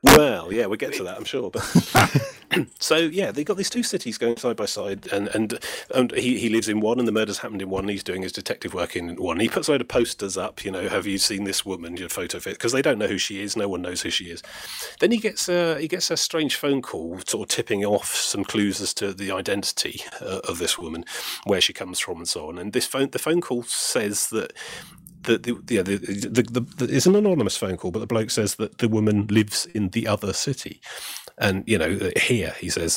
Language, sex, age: English, male, 30-49